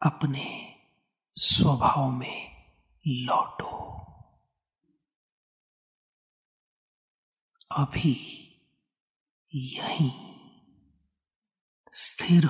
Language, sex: Hindi, male